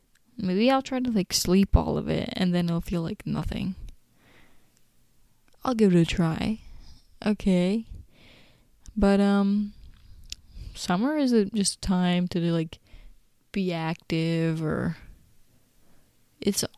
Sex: female